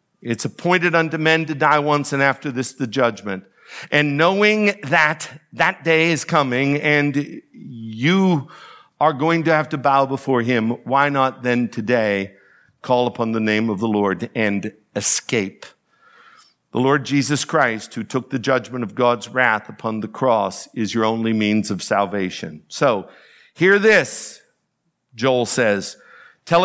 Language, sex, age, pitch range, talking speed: English, male, 50-69, 115-165 Hz, 155 wpm